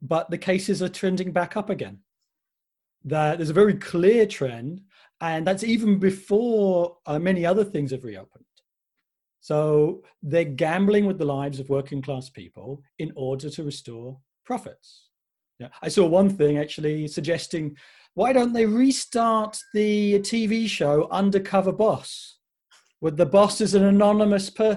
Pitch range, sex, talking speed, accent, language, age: 150-205 Hz, male, 145 wpm, British, English, 40-59